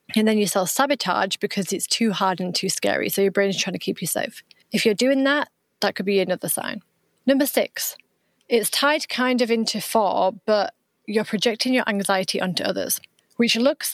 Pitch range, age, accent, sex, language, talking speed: 190-230 Hz, 30-49, British, female, English, 200 wpm